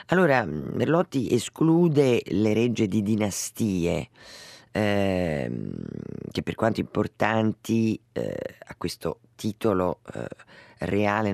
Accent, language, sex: native, Italian, female